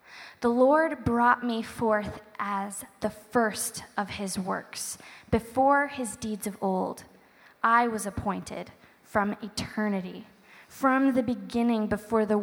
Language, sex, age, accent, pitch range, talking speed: English, female, 10-29, American, 205-245 Hz, 125 wpm